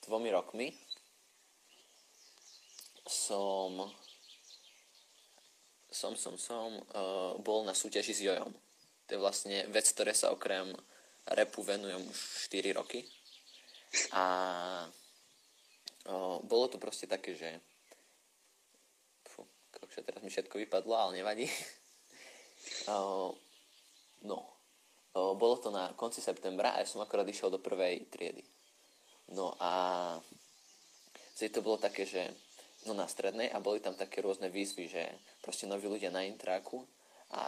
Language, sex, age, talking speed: Slovak, male, 20-39, 125 wpm